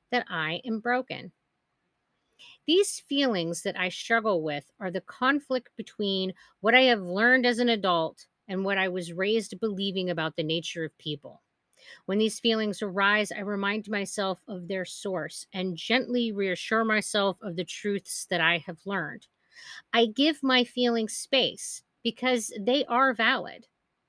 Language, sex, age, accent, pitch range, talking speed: English, female, 50-69, American, 180-230 Hz, 155 wpm